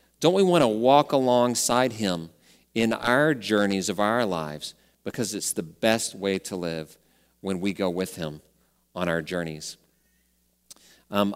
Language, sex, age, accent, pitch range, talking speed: English, male, 40-59, American, 95-130 Hz, 155 wpm